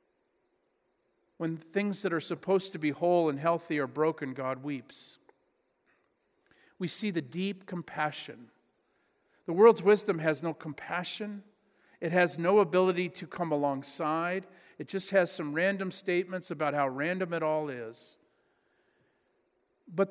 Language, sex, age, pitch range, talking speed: English, male, 50-69, 150-195 Hz, 135 wpm